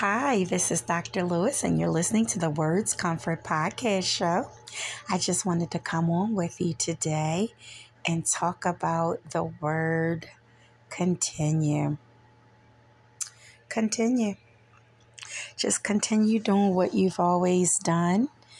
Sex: female